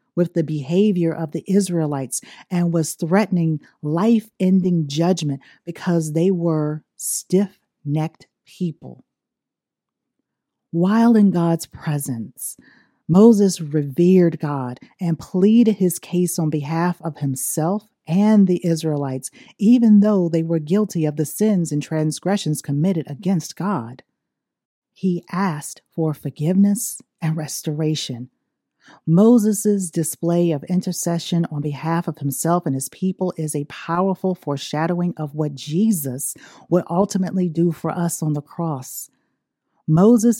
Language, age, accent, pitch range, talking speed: English, 40-59, American, 155-190 Hz, 120 wpm